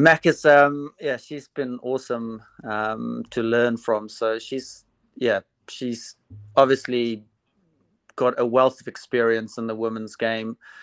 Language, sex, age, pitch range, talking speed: English, male, 20-39, 105-115 Hz, 140 wpm